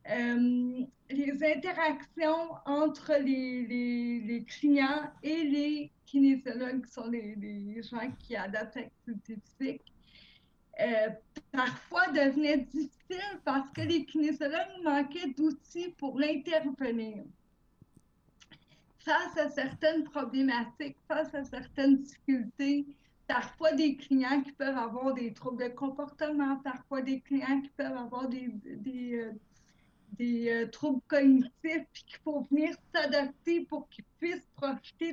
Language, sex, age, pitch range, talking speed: French, female, 50-69, 255-305 Hz, 125 wpm